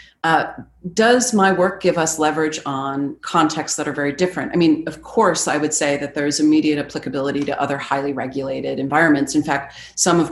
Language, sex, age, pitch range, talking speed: English, female, 30-49, 135-160 Hz, 190 wpm